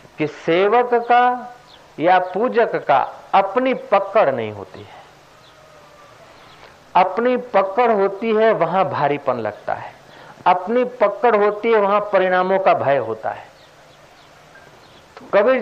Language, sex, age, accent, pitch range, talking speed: Hindi, male, 50-69, native, 165-235 Hz, 115 wpm